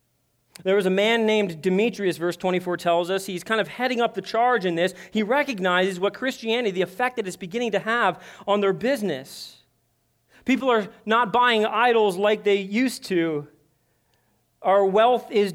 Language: English